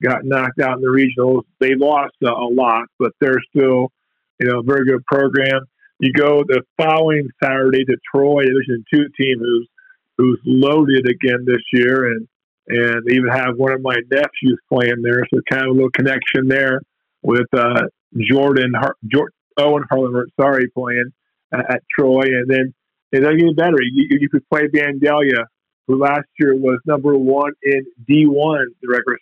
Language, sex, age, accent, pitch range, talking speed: English, male, 40-59, American, 130-150 Hz, 175 wpm